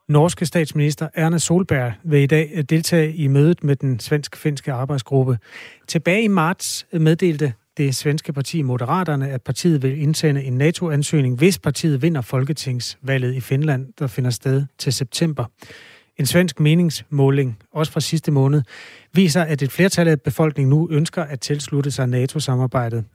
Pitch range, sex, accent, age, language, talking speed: 130-160 Hz, male, native, 30-49, Danish, 150 wpm